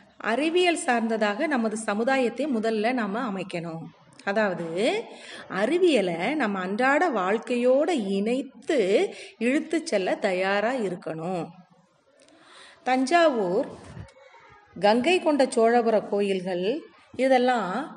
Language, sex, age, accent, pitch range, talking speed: Tamil, female, 30-49, native, 205-270 Hz, 75 wpm